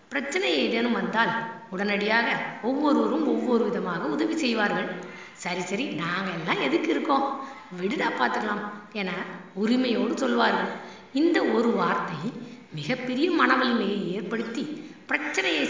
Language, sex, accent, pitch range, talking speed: Tamil, female, native, 200-260 Hz, 105 wpm